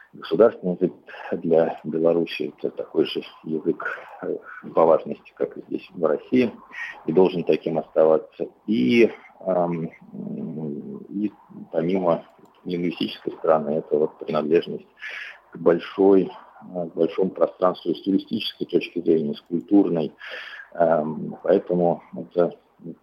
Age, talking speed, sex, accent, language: 50-69, 110 wpm, male, native, Russian